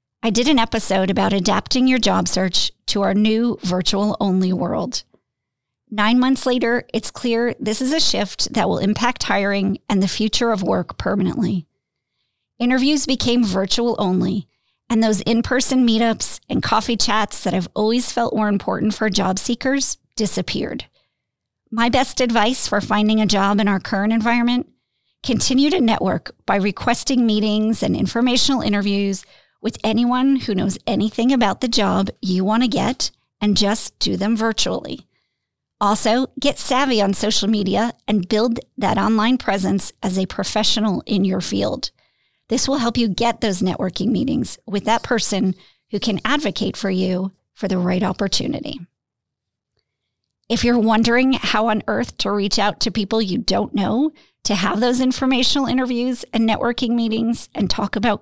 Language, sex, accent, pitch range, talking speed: English, female, American, 200-240 Hz, 160 wpm